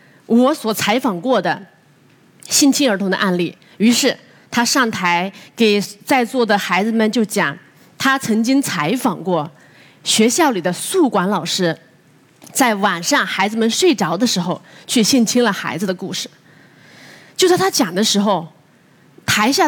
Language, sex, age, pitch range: Chinese, female, 20-39, 190-270 Hz